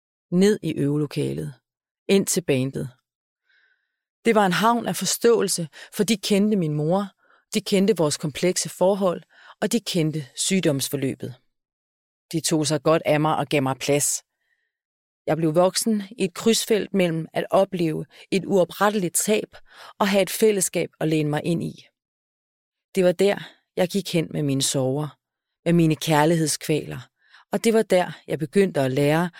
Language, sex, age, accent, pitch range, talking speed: Danish, female, 30-49, native, 145-195 Hz, 155 wpm